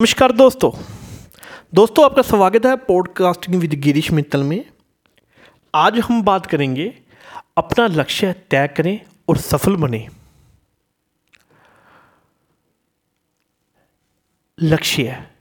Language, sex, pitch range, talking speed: Hindi, male, 160-245 Hz, 90 wpm